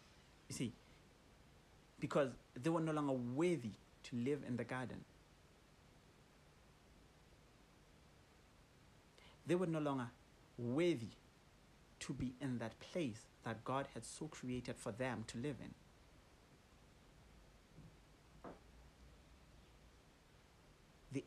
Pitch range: 115-145 Hz